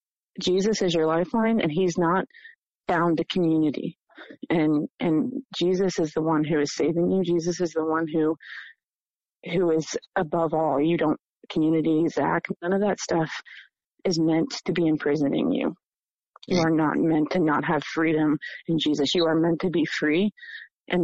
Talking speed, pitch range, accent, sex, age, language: 170 wpm, 165-195 Hz, American, female, 30-49, English